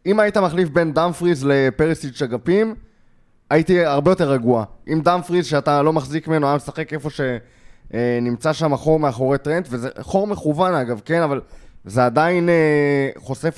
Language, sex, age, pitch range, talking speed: Hebrew, male, 20-39, 120-165 Hz, 155 wpm